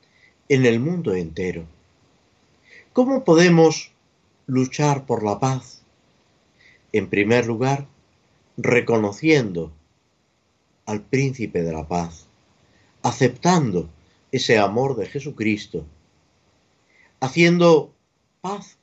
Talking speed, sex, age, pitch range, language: 85 wpm, male, 50-69, 105-150 Hz, Spanish